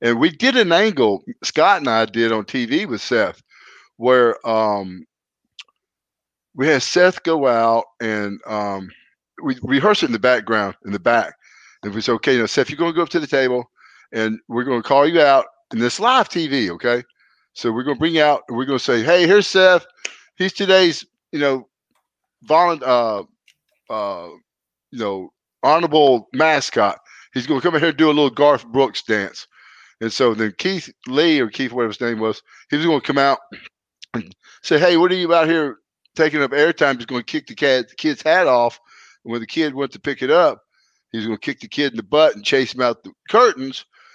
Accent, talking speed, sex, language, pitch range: American, 210 wpm, male, English, 115-155 Hz